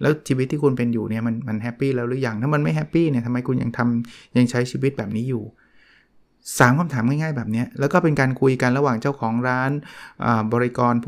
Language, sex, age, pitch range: Thai, male, 20-39, 115-135 Hz